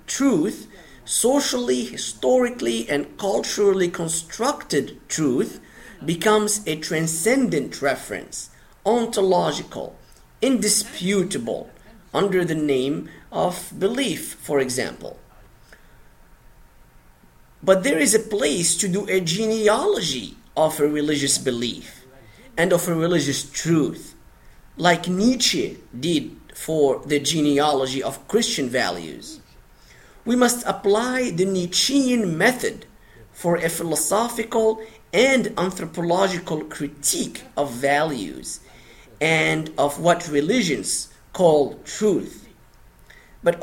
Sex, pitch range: male, 155-230 Hz